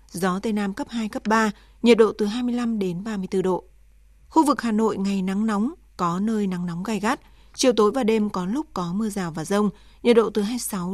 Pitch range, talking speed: 190-235 Hz, 230 wpm